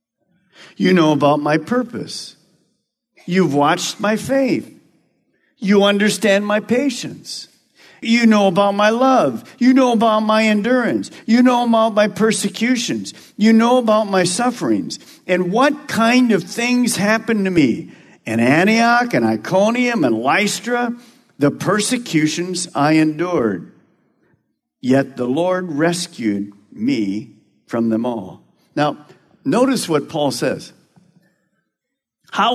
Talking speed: 120 wpm